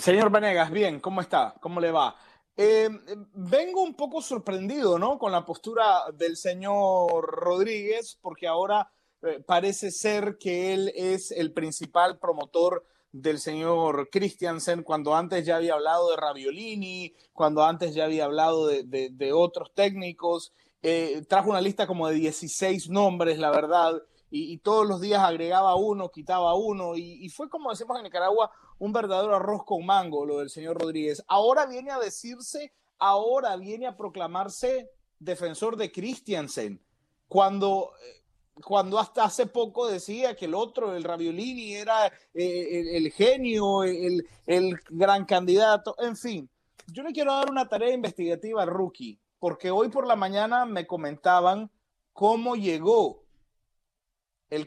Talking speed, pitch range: 150 wpm, 170-220 Hz